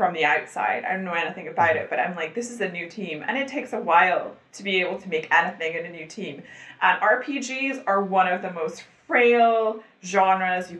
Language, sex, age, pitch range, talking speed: English, female, 30-49, 175-240 Hz, 230 wpm